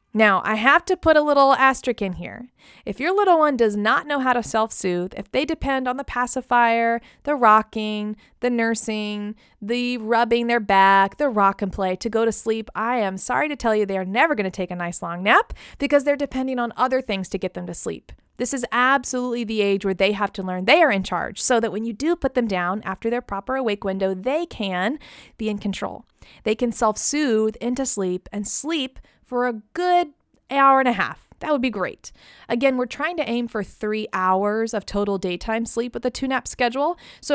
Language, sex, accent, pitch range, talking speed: English, female, American, 205-265 Hz, 220 wpm